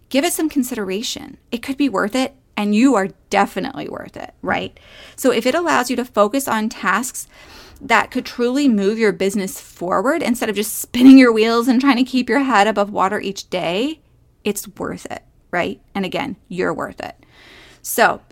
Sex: female